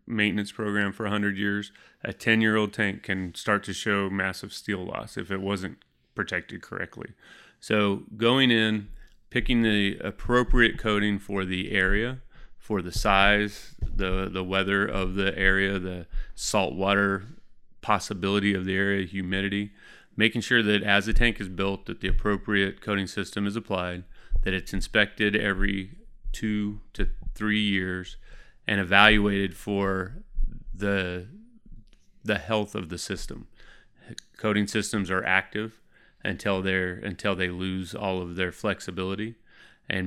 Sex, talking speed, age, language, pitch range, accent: male, 140 wpm, 30-49, English, 95-105 Hz, American